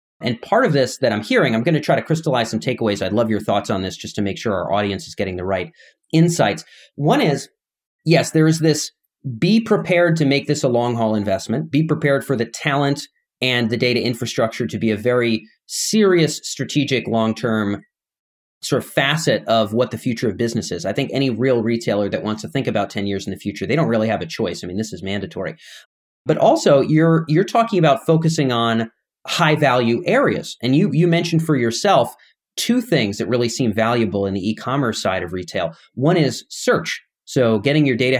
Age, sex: 30-49, male